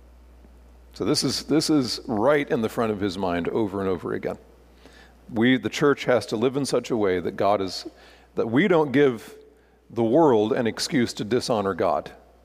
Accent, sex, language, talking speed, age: American, male, English, 195 wpm, 40-59